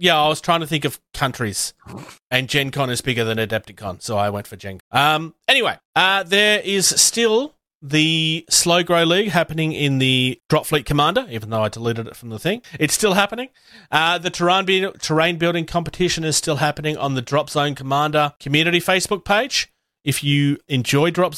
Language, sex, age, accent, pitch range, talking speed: English, male, 30-49, Australian, 130-180 Hz, 195 wpm